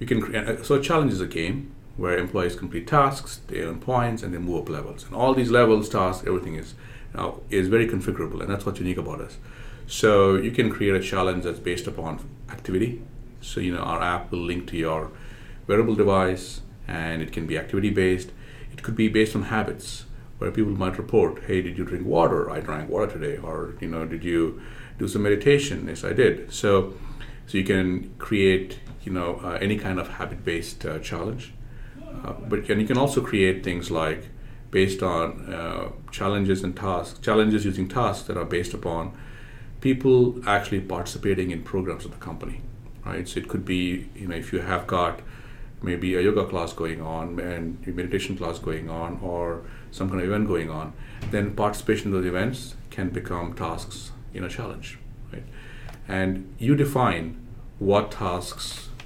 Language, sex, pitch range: English, male, 90-120 Hz